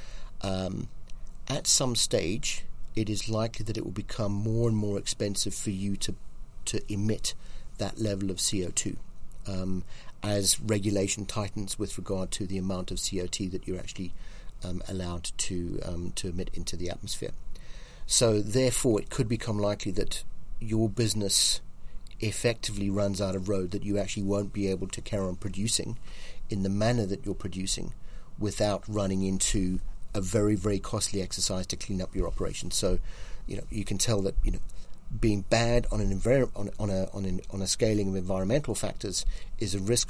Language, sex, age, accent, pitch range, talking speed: English, male, 40-59, British, 95-110 Hz, 170 wpm